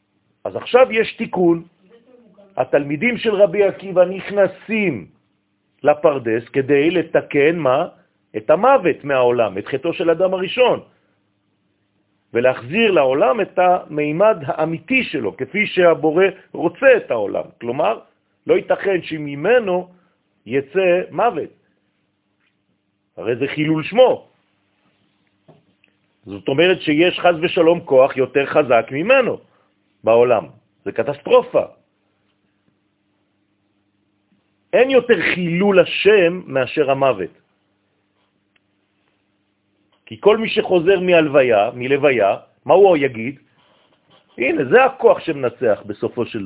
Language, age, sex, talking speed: French, 50-69, male, 95 wpm